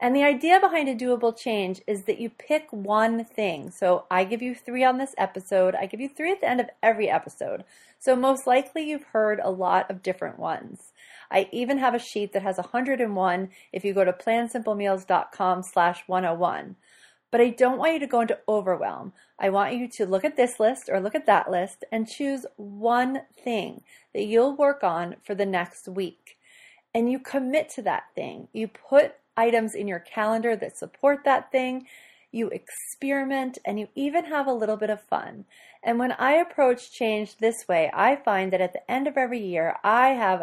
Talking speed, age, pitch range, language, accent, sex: 200 wpm, 30-49, 200-260 Hz, English, American, female